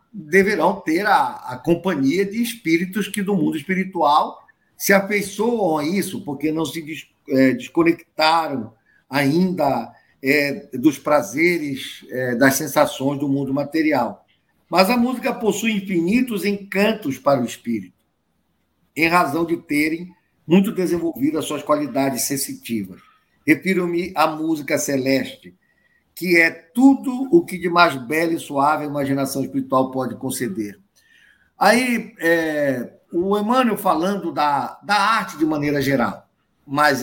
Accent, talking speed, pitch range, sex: Brazilian, 130 wpm, 135-200 Hz, male